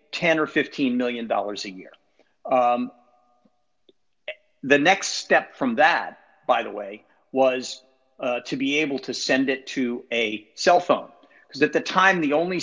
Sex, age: male, 50-69